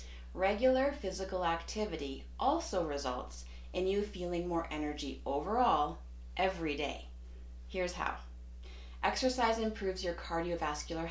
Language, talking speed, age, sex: English, 105 wpm, 40-59, female